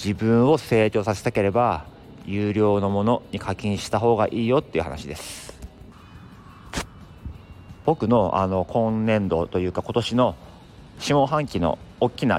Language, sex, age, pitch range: Japanese, male, 40-59, 90-115 Hz